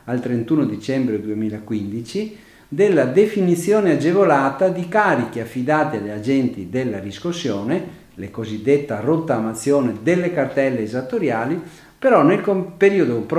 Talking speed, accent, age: 105 wpm, native, 50-69